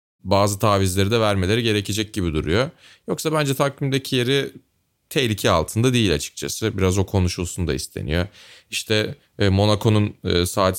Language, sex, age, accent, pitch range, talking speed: Turkish, male, 30-49, native, 85-110 Hz, 130 wpm